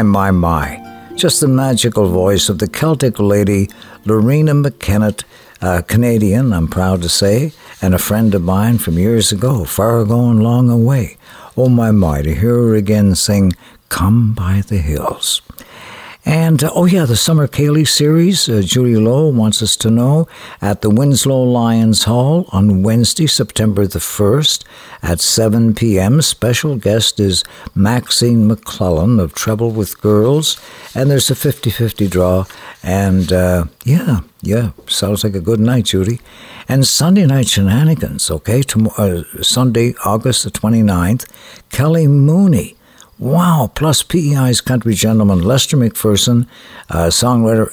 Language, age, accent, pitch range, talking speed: English, 60-79, American, 100-135 Hz, 145 wpm